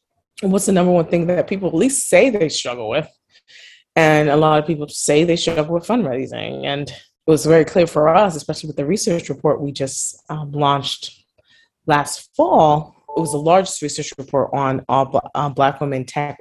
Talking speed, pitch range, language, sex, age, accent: 195 wpm, 135-175 Hz, English, female, 20-39, American